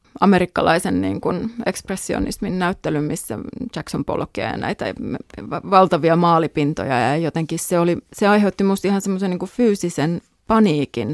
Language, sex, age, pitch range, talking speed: Finnish, female, 30-49, 160-195 Hz, 125 wpm